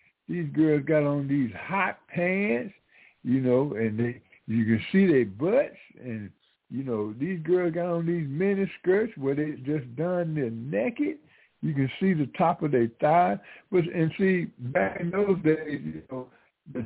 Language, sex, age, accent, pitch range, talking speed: English, male, 60-79, American, 115-155 Hz, 175 wpm